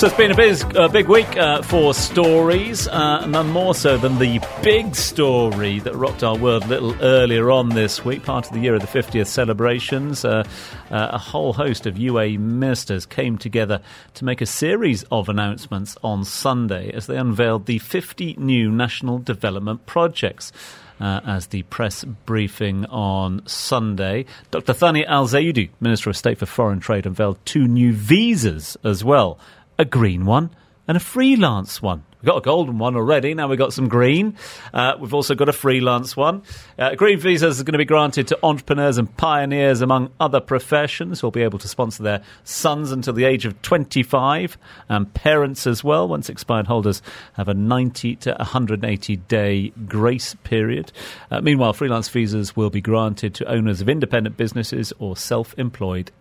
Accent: British